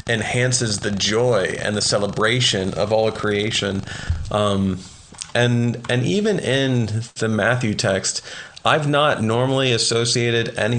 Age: 40-59